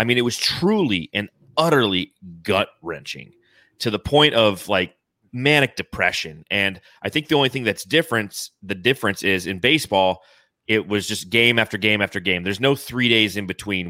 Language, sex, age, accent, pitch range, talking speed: English, male, 30-49, American, 95-125 Hz, 180 wpm